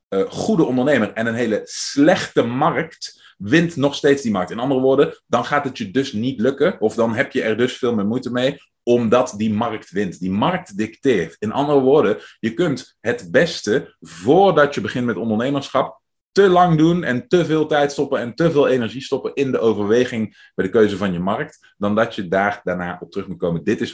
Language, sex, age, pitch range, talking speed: Dutch, male, 30-49, 105-140 Hz, 215 wpm